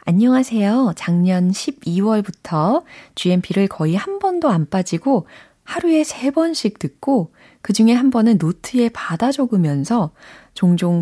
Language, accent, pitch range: Korean, native, 155-225 Hz